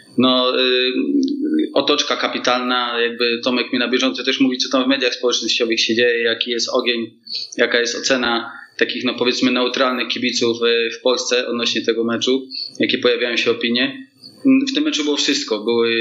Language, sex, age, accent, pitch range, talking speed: Polish, male, 20-39, native, 115-135 Hz, 170 wpm